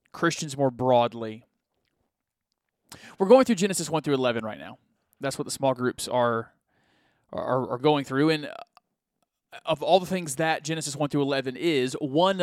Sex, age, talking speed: male, 30-49, 165 wpm